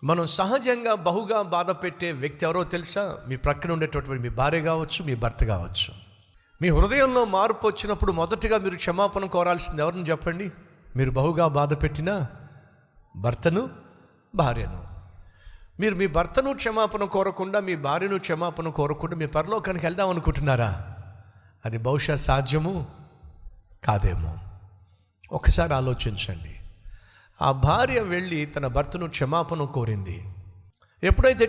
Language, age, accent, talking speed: Telugu, 50-69, native, 110 wpm